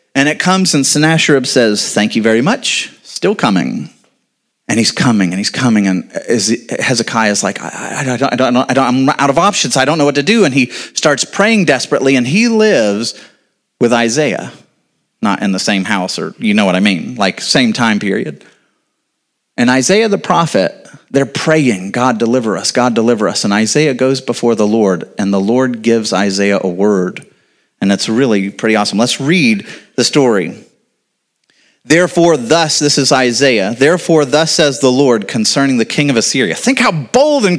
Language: English